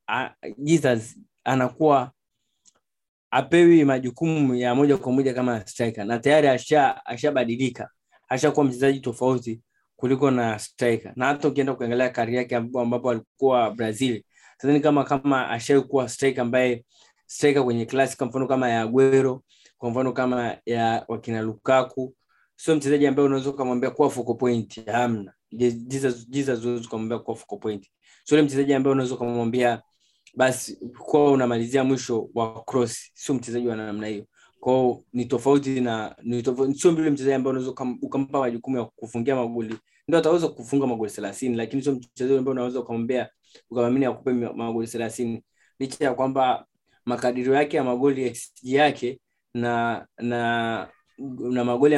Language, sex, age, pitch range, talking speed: Swahili, male, 20-39, 120-135 Hz, 140 wpm